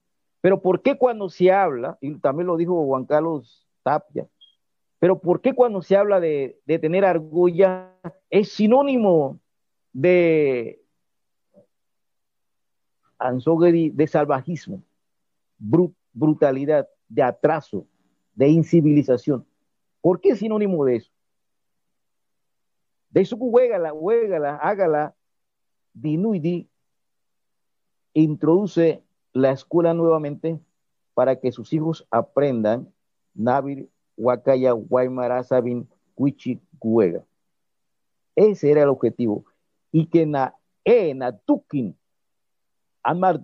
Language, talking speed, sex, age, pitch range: Spanish, 100 wpm, male, 50-69, 115-175 Hz